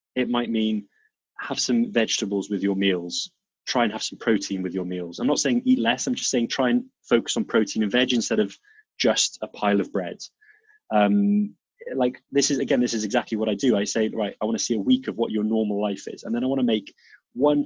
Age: 20-39